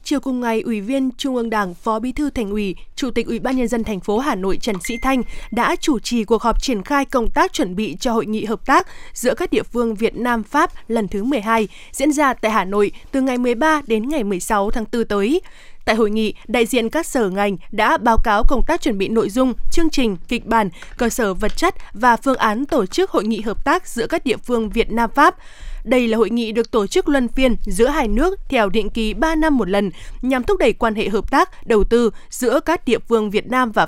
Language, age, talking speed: Vietnamese, 20-39, 250 wpm